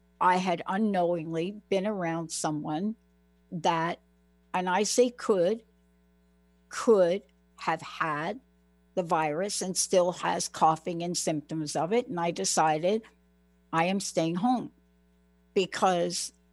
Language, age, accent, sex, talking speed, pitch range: English, 60-79, American, female, 115 wpm, 125-200 Hz